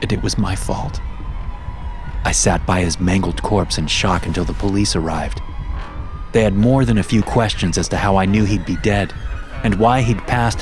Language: English